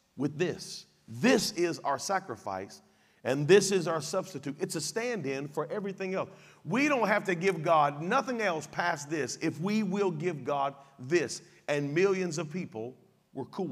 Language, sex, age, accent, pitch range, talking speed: English, male, 40-59, American, 145-190 Hz, 175 wpm